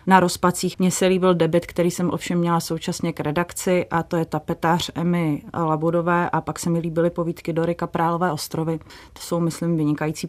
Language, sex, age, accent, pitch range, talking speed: Czech, female, 30-49, native, 160-170 Hz, 200 wpm